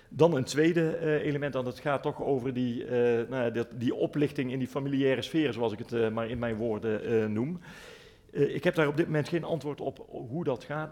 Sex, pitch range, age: male, 110-135 Hz, 40-59